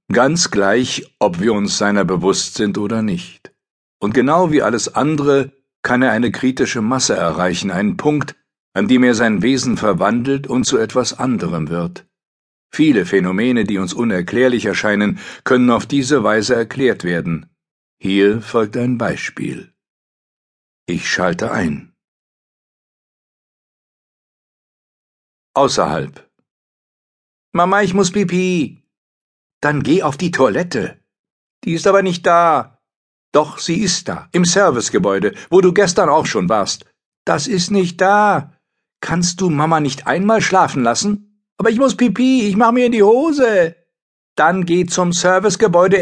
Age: 60-79